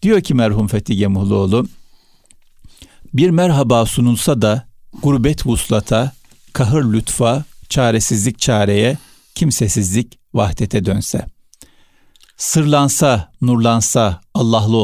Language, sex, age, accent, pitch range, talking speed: Turkish, male, 60-79, native, 100-130 Hz, 85 wpm